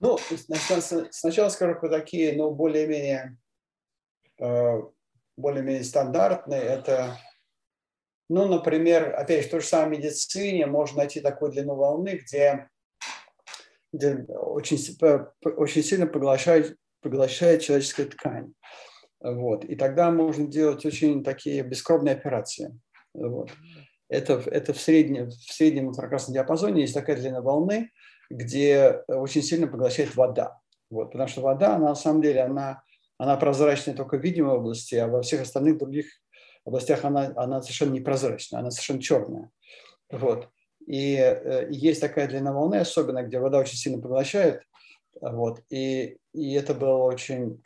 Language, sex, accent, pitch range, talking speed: Russian, male, native, 130-155 Hz, 140 wpm